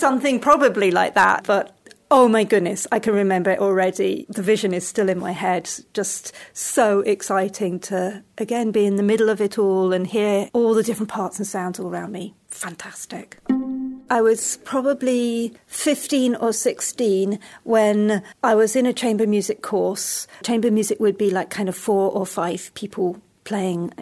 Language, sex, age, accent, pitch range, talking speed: English, female, 40-59, British, 190-235 Hz, 175 wpm